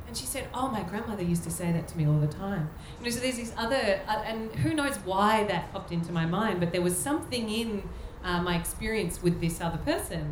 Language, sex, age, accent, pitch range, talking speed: English, female, 30-49, Australian, 160-200 Hz, 250 wpm